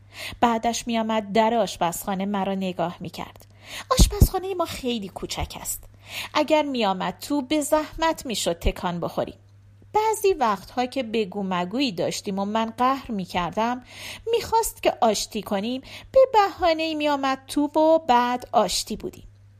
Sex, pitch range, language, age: female, 195-310 Hz, Persian, 40-59